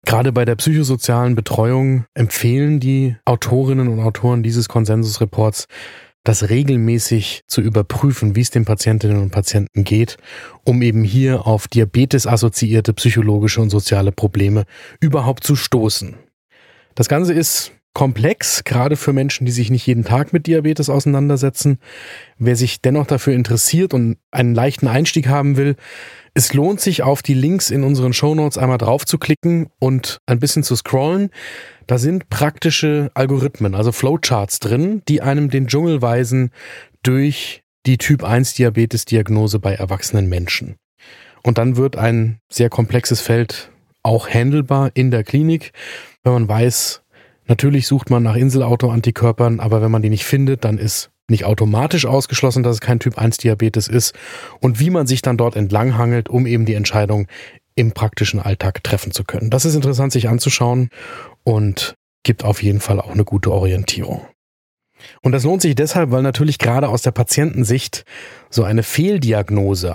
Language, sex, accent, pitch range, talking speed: German, male, German, 110-135 Hz, 155 wpm